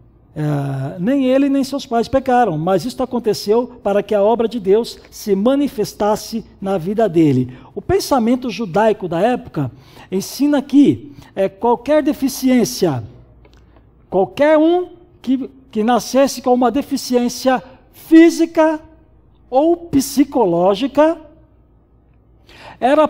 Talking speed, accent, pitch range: 105 wpm, Brazilian, 185-280 Hz